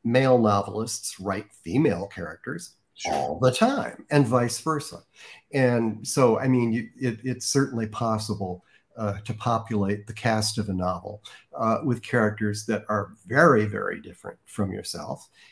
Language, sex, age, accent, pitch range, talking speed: English, male, 50-69, American, 105-125 Hz, 140 wpm